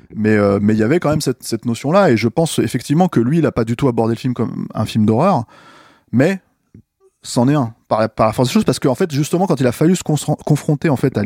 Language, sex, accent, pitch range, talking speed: French, male, French, 110-140 Hz, 290 wpm